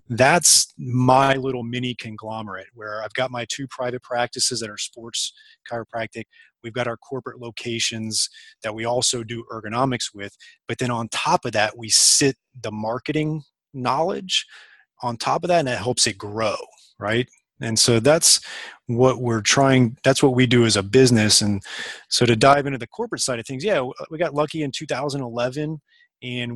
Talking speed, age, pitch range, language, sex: 175 wpm, 30-49, 115-130 Hz, English, male